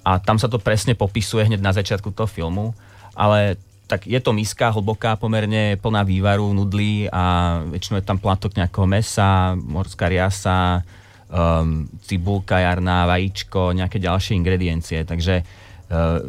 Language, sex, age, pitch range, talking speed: Czech, male, 30-49, 90-105 Hz, 145 wpm